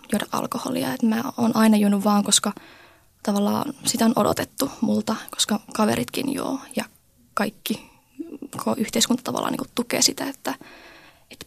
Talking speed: 135 wpm